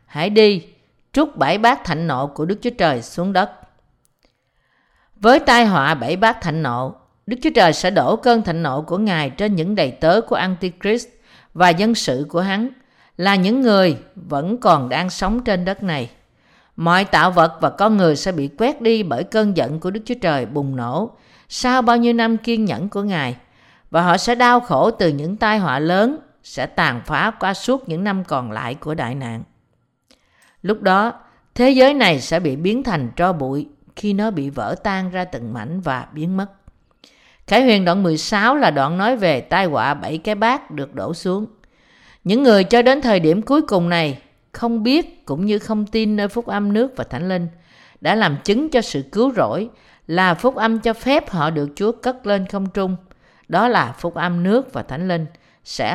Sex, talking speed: female, 200 wpm